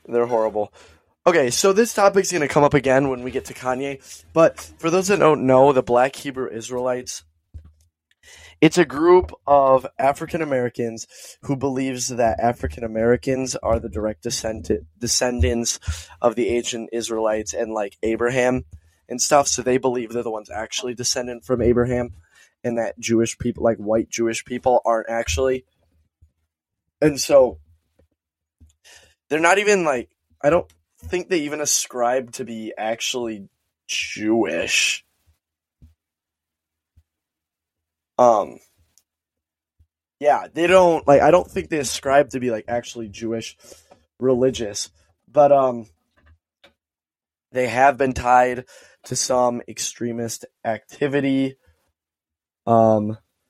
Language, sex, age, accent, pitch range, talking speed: English, male, 10-29, American, 90-130 Hz, 125 wpm